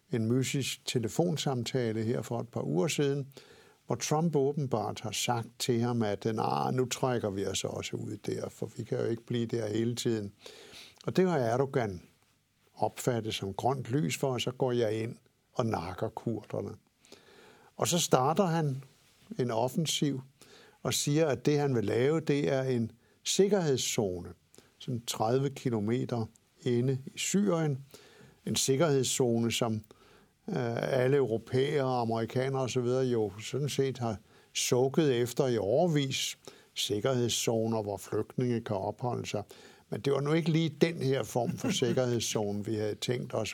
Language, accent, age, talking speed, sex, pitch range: Danish, native, 60-79, 155 wpm, male, 115-140 Hz